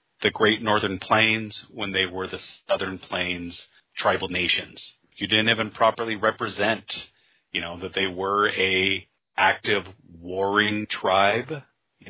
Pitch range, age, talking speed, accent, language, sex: 95-115 Hz, 30-49, 135 wpm, American, English, male